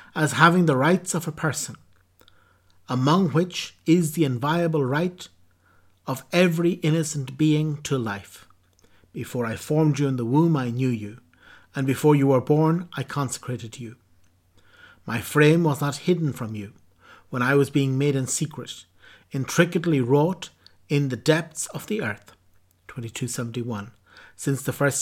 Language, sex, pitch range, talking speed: English, male, 125-160 Hz, 150 wpm